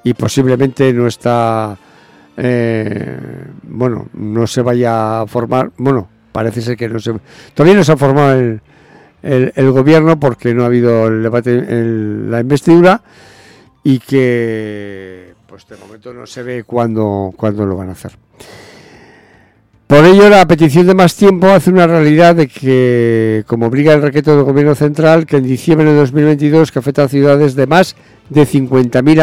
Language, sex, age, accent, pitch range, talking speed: English, male, 60-79, Spanish, 110-150 Hz, 165 wpm